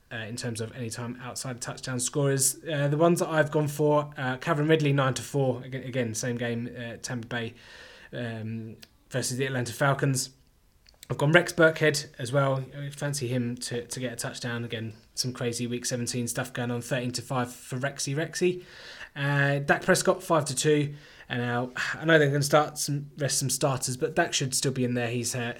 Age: 20-39